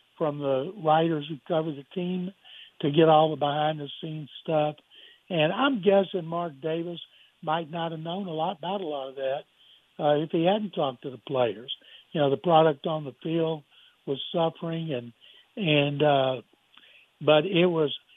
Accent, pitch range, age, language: American, 155-185 Hz, 60-79, English